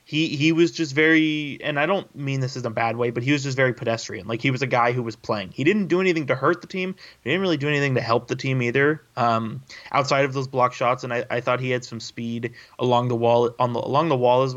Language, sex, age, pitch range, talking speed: English, male, 20-39, 115-135 Hz, 285 wpm